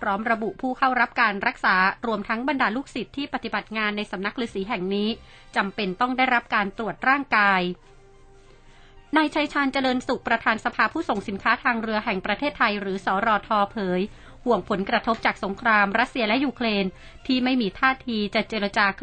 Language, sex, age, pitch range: Thai, female, 30-49, 195-240 Hz